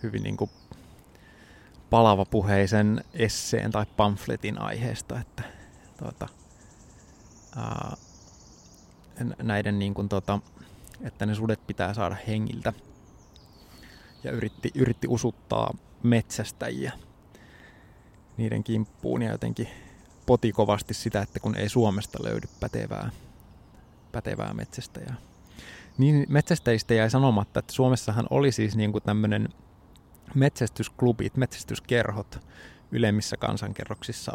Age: 20-39